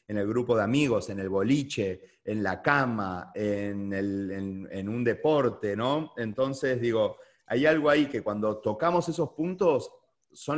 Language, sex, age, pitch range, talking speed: Spanish, male, 30-49, 110-145 Hz, 165 wpm